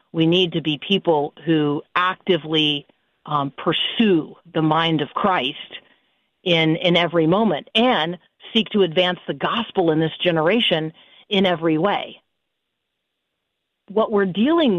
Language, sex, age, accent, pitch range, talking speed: English, female, 50-69, American, 175-245 Hz, 130 wpm